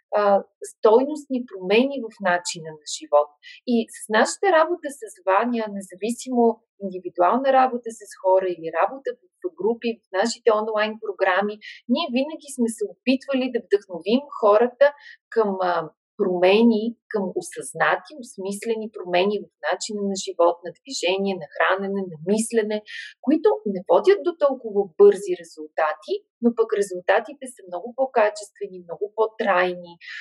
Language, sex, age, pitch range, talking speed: Bulgarian, female, 30-49, 195-285 Hz, 125 wpm